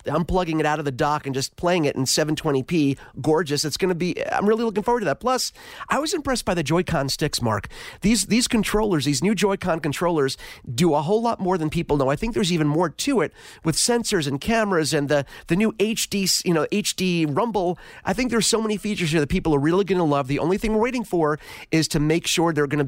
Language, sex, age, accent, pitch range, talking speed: English, male, 30-49, American, 150-195 Hz, 240 wpm